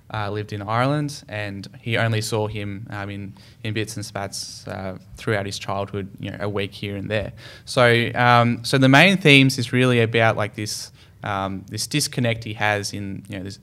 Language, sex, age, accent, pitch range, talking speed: English, male, 10-29, Australian, 100-115 Hz, 205 wpm